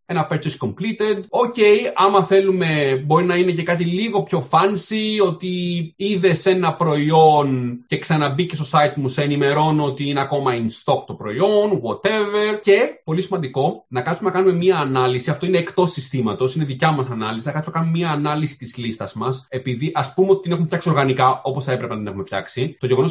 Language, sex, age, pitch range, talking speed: Greek, male, 30-49, 145-195 Hz, 195 wpm